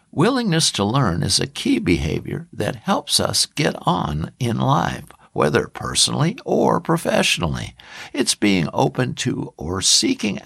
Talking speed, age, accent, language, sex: 140 wpm, 60-79, American, English, male